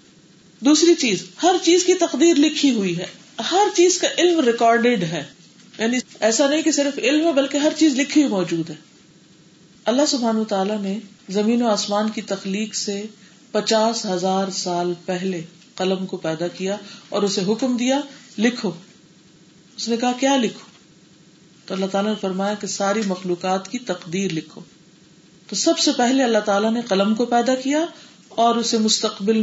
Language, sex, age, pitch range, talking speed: Urdu, female, 40-59, 180-240 Hz, 135 wpm